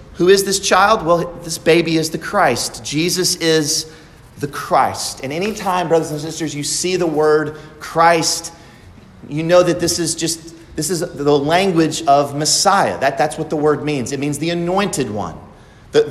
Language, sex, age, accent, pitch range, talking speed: English, male, 40-59, American, 145-190 Hz, 175 wpm